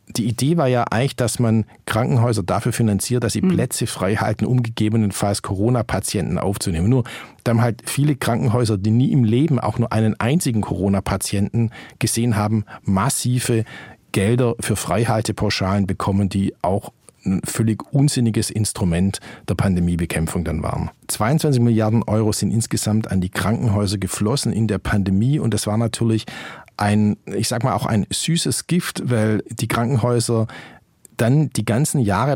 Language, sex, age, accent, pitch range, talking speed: German, male, 50-69, German, 105-125 Hz, 150 wpm